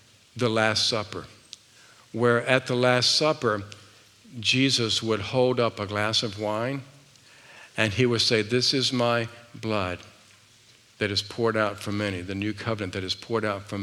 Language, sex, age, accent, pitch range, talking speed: English, male, 50-69, American, 100-120 Hz, 165 wpm